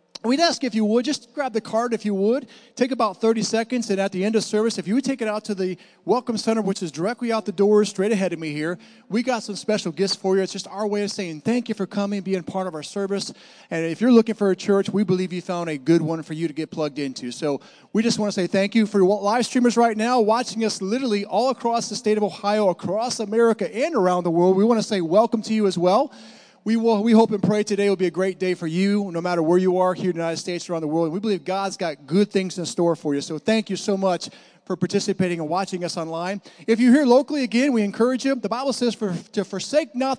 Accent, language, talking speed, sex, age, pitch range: American, English, 280 wpm, male, 30-49, 180-225 Hz